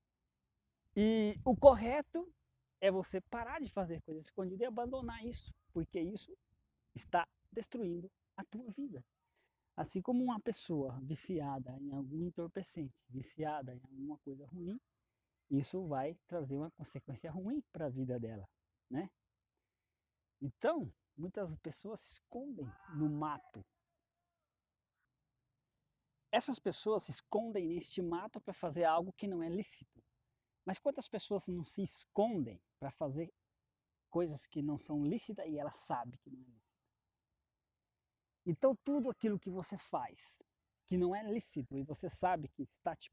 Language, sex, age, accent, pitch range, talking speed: Portuguese, male, 20-39, Brazilian, 140-195 Hz, 140 wpm